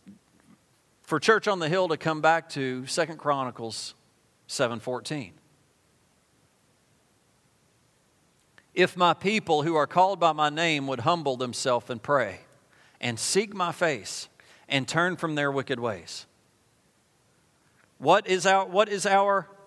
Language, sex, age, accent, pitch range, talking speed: English, male, 40-59, American, 125-170 Hz, 125 wpm